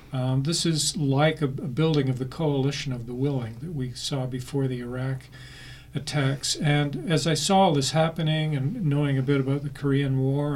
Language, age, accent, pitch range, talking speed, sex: English, 50-69, American, 135-155 Hz, 195 wpm, male